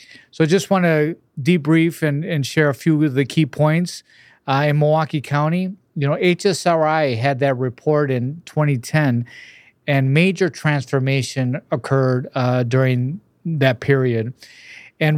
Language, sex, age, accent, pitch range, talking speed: English, male, 40-59, American, 130-160 Hz, 140 wpm